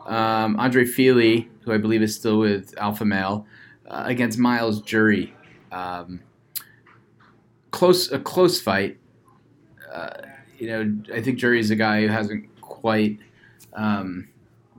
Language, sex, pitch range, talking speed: English, male, 105-115 Hz, 135 wpm